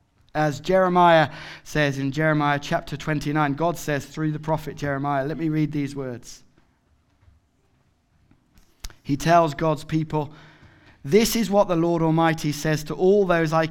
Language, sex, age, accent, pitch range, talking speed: English, male, 20-39, British, 130-165 Hz, 145 wpm